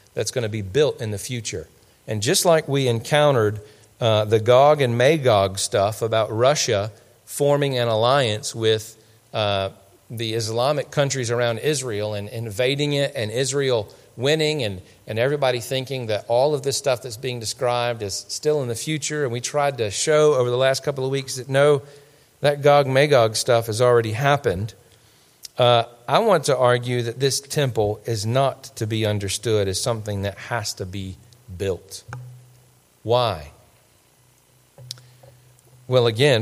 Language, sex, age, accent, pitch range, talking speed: English, male, 40-59, American, 110-135 Hz, 160 wpm